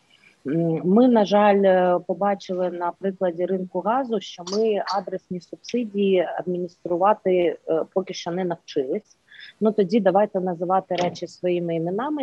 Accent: native